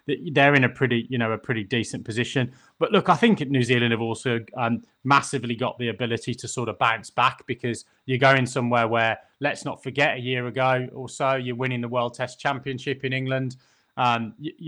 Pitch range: 120-140 Hz